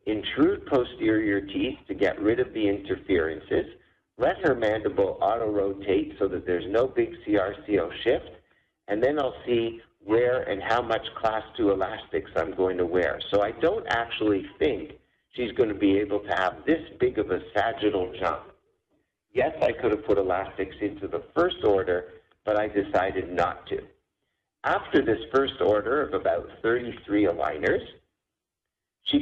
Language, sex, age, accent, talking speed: English, male, 50-69, American, 160 wpm